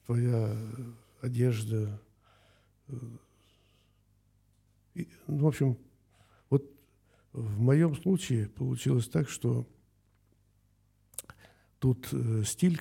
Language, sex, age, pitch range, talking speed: Russian, male, 60-79, 105-125 Hz, 70 wpm